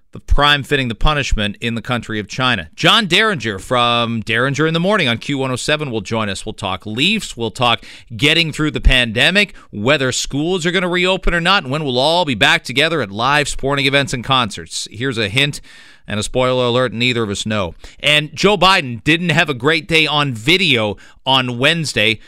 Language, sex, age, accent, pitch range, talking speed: English, male, 40-59, American, 125-160 Hz, 200 wpm